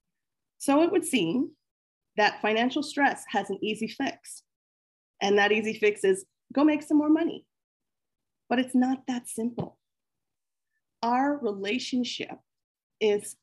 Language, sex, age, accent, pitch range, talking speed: English, female, 30-49, American, 195-265 Hz, 130 wpm